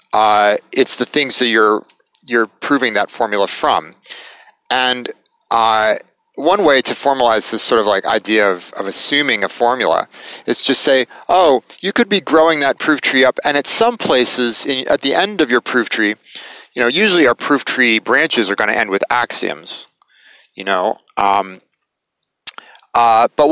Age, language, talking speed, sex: 30-49, English, 175 wpm, male